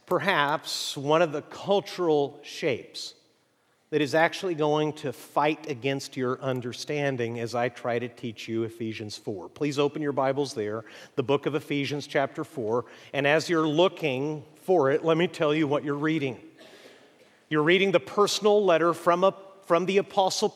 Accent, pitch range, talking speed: American, 145-180 Hz, 165 wpm